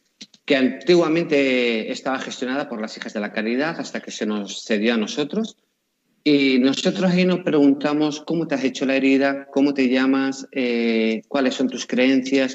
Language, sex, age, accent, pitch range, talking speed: Spanish, male, 40-59, Spanish, 115-140 Hz, 170 wpm